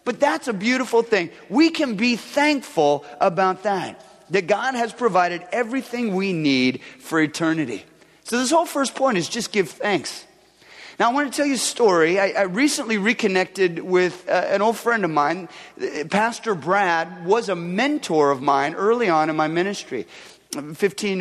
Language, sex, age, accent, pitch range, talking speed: English, male, 30-49, American, 165-220 Hz, 175 wpm